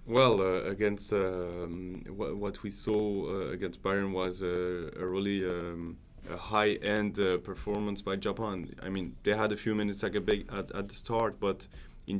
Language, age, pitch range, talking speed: English, 20-39, 95-105 Hz, 180 wpm